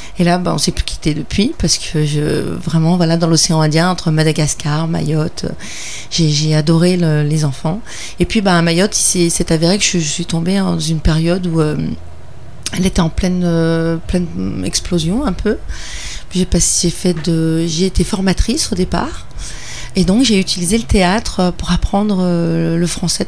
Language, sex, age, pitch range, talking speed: French, female, 40-59, 160-180 Hz, 195 wpm